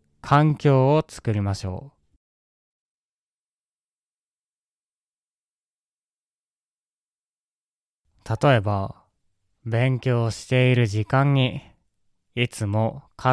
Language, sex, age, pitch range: Japanese, male, 20-39, 100-135 Hz